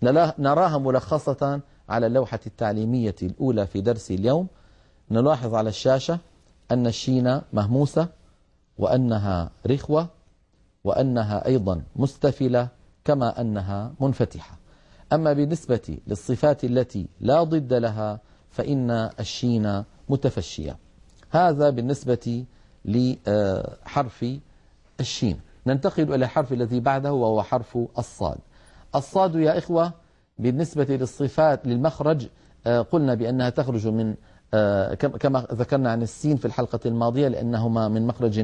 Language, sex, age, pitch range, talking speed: Arabic, male, 40-59, 110-140 Hz, 100 wpm